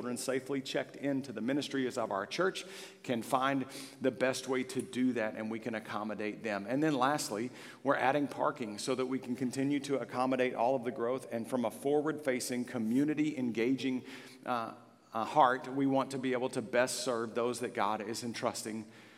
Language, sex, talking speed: English, male, 185 wpm